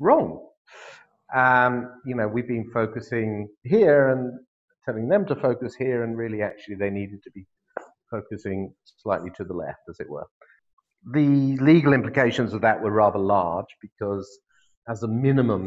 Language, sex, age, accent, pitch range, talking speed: English, male, 50-69, British, 100-125 Hz, 155 wpm